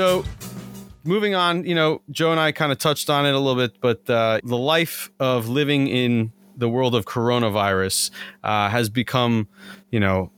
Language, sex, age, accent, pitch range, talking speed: English, male, 30-49, American, 105-135 Hz, 185 wpm